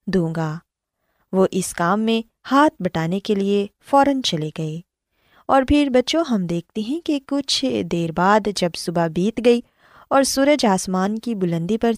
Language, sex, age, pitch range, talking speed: Urdu, female, 20-39, 185-275 Hz, 165 wpm